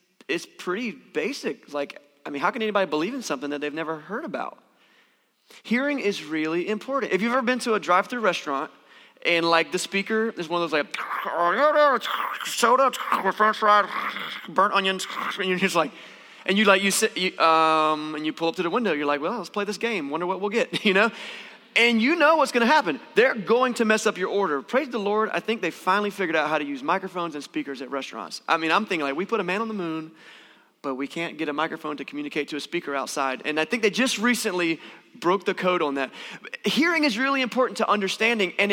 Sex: male